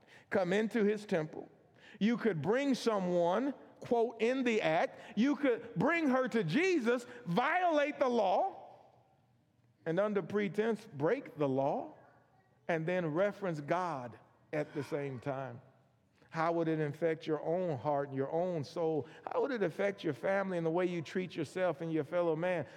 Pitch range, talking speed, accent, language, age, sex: 130-185 Hz, 165 wpm, American, English, 40-59, male